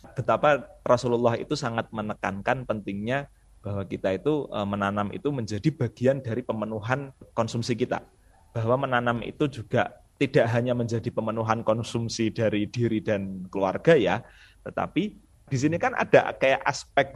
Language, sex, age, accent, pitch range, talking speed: Indonesian, male, 30-49, native, 100-125 Hz, 135 wpm